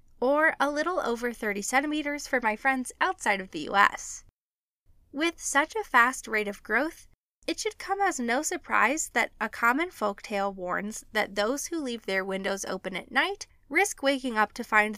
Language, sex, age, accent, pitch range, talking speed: English, female, 10-29, American, 205-300 Hz, 180 wpm